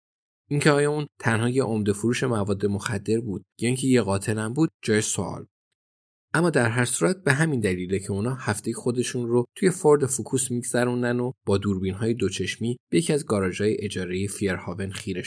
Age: 20-39